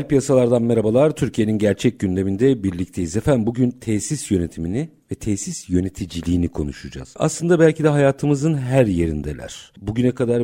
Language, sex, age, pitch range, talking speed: Turkish, male, 50-69, 90-130 Hz, 125 wpm